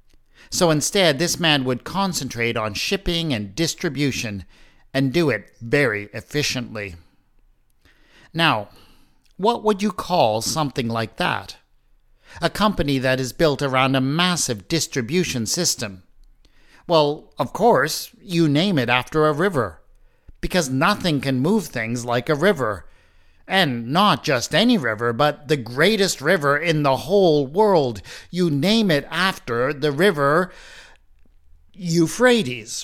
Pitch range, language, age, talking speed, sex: 125-180 Hz, English, 50-69, 130 wpm, male